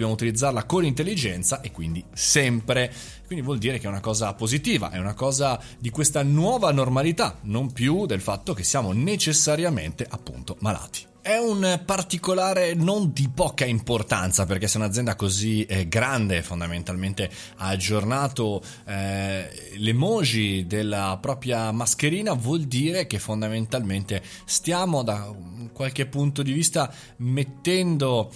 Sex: male